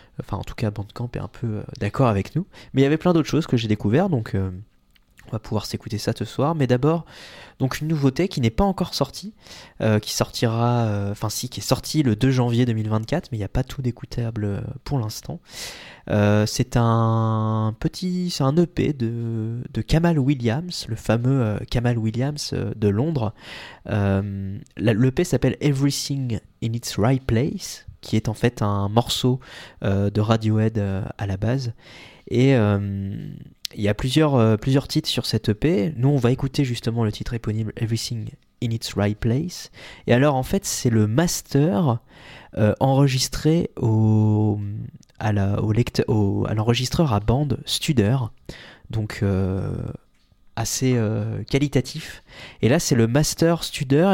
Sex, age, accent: male, 20-39, French